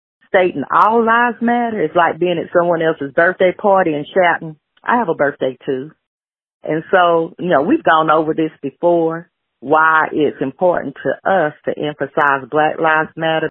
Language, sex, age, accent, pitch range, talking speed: English, female, 40-59, American, 145-180 Hz, 165 wpm